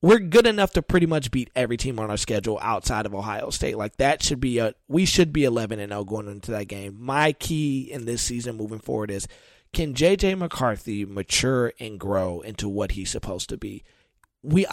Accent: American